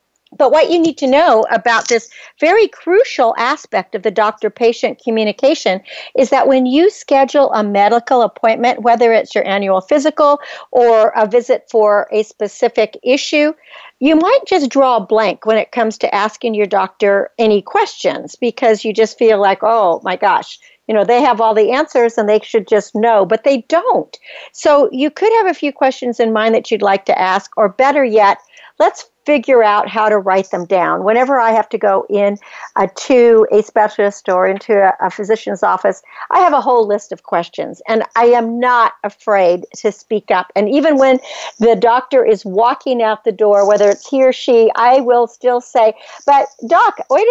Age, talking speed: 60-79, 190 wpm